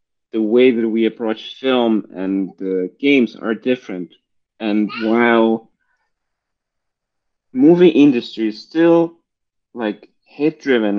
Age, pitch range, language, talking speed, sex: 30-49, 100-125 Hz, English, 115 wpm, male